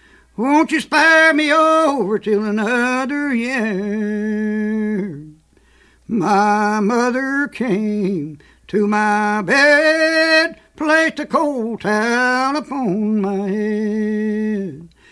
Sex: male